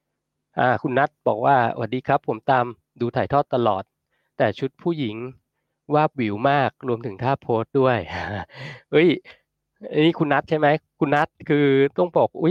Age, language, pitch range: 20-39, Thai, 115-145 Hz